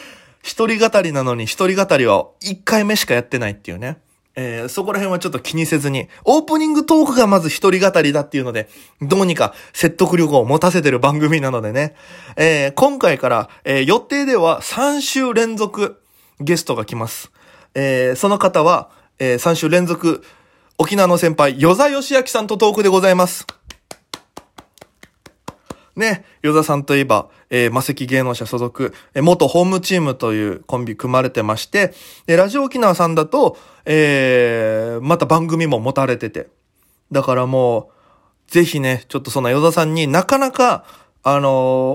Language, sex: Japanese, male